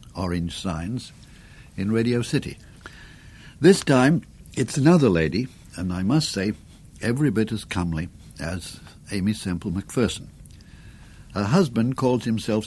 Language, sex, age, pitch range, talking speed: English, male, 60-79, 85-125 Hz, 125 wpm